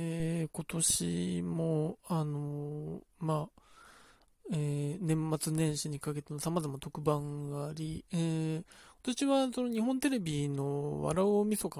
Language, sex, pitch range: Japanese, male, 150-205 Hz